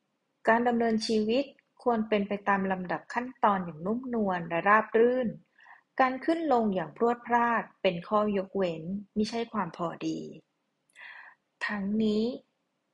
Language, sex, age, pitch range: Thai, female, 30-49, 185-240 Hz